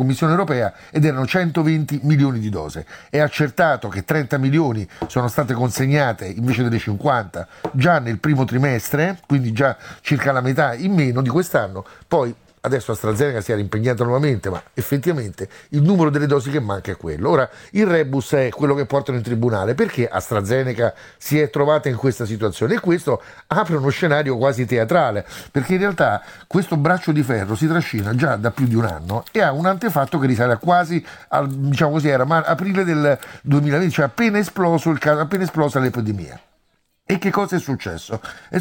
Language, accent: Italian, native